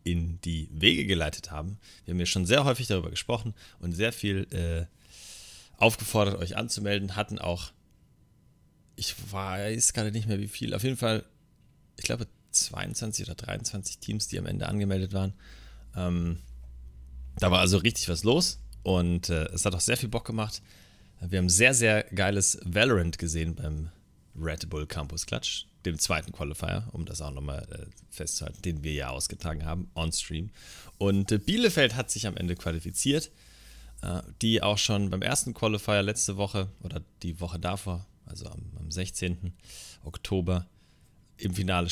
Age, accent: 30-49, German